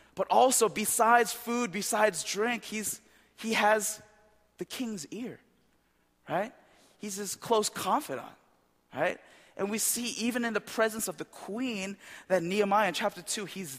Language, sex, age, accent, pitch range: Korean, male, 20-39, American, 160-215 Hz